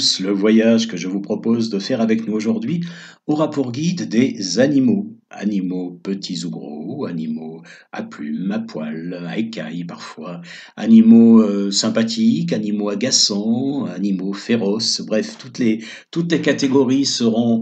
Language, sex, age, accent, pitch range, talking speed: French, male, 50-69, French, 105-160 Hz, 145 wpm